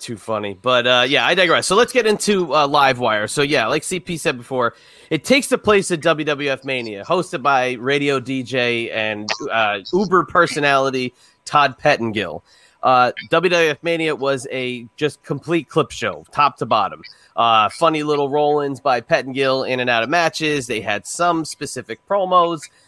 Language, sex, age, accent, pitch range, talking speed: English, male, 30-49, American, 125-160 Hz, 170 wpm